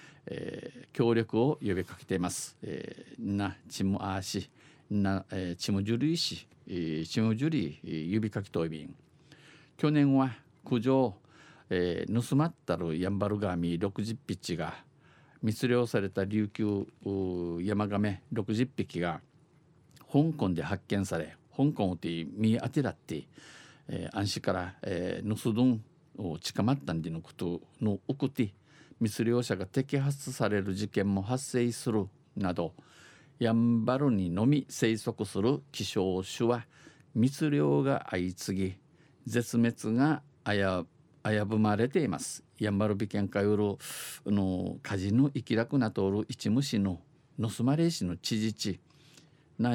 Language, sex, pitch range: Japanese, male, 95-135 Hz